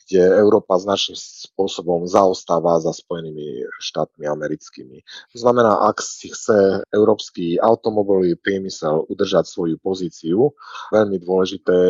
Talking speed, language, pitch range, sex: 115 wpm, Slovak, 85-95 Hz, male